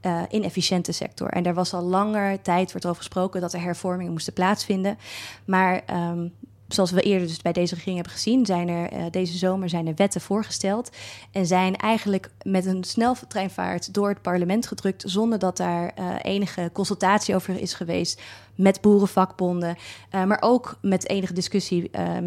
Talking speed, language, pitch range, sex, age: 175 wpm, Dutch, 175-200 Hz, female, 20-39